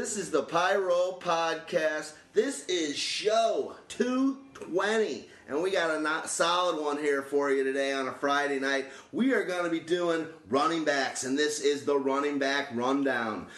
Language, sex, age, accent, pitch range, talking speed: English, male, 30-49, American, 135-170 Hz, 170 wpm